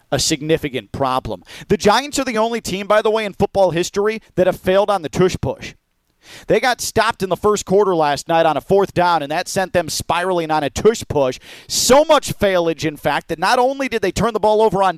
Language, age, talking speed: English, 40-59, 235 wpm